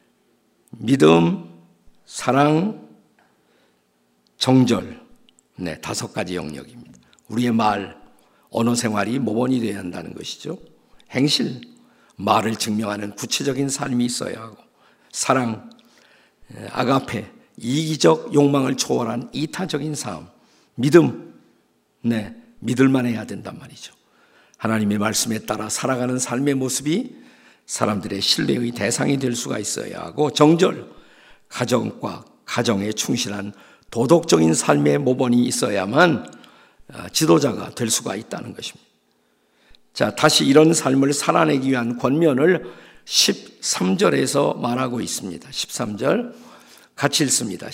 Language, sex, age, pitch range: Korean, male, 50-69, 105-140 Hz